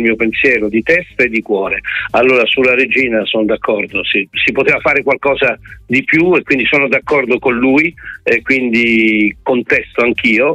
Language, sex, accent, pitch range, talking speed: Italian, male, native, 110-140 Hz, 165 wpm